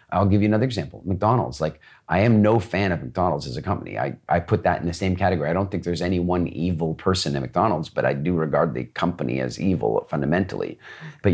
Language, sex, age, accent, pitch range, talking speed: English, male, 40-59, American, 85-110 Hz, 235 wpm